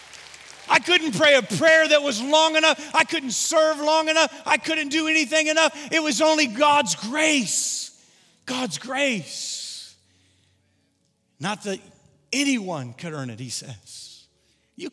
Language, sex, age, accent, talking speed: English, male, 40-59, American, 140 wpm